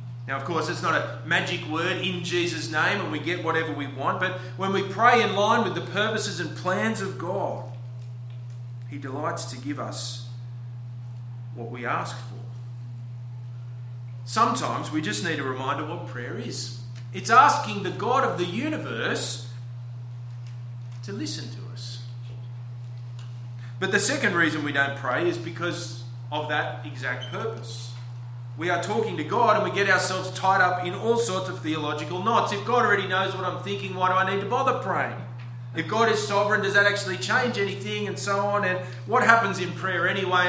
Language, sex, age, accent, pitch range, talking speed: English, male, 30-49, Australian, 120-150 Hz, 180 wpm